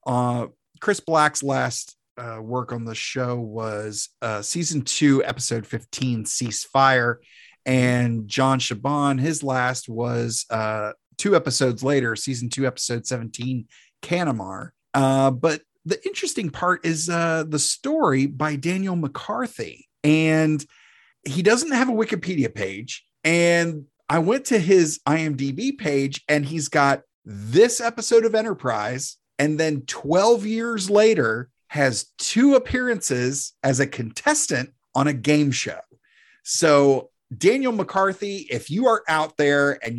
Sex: male